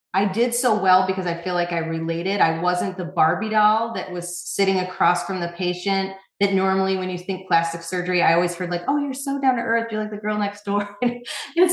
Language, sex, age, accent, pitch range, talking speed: English, female, 30-49, American, 170-205 Hz, 235 wpm